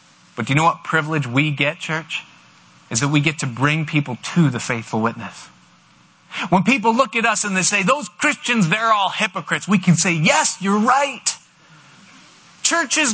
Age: 30-49